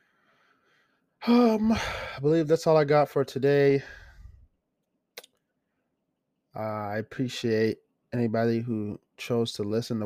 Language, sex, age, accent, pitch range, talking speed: English, male, 20-39, American, 115-140 Hz, 105 wpm